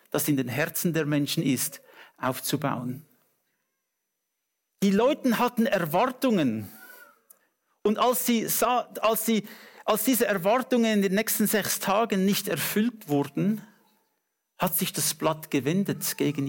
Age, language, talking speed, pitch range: 50-69, English, 110 wpm, 150-210 Hz